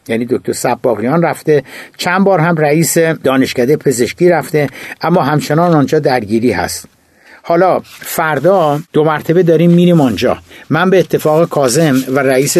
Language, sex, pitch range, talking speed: Persian, male, 125-160 Hz, 140 wpm